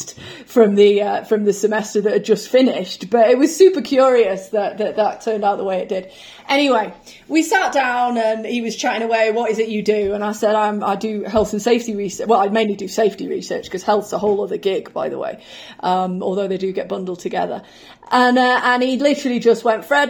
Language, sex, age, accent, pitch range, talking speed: English, female, 30-49, British, 210-255 Hz, 235 wpm